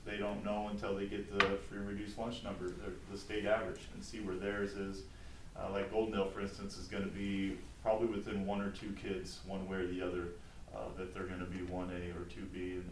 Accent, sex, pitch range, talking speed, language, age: American, male, 90-100 Hz, 230 wpm, English, 30-49